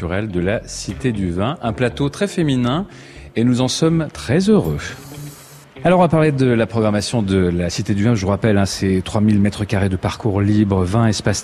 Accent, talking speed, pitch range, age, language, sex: French, 210 wpm, 95-125 Hz, 40-59, French, male